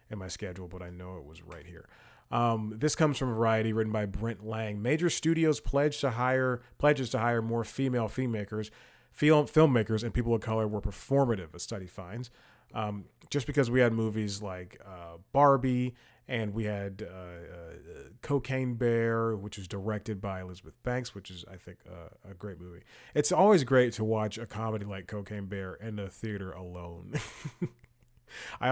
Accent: American